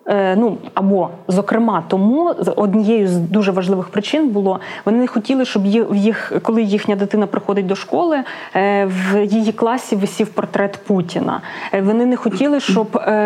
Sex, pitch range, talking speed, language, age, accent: female, 195-225 Hz, 140 wpm, Ukrainian, 20-39, native